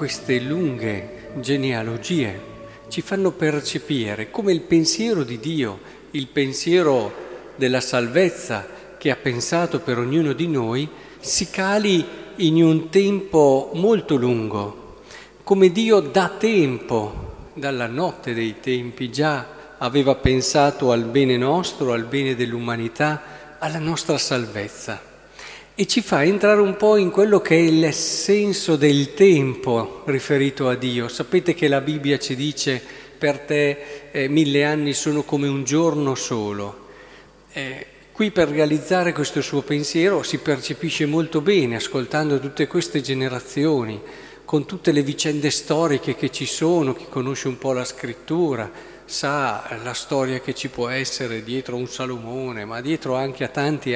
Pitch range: 130-165 Hz